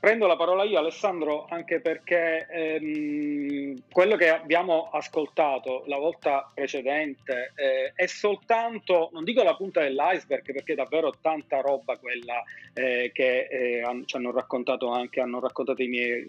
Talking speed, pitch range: 150 wpm, 135-185 Hz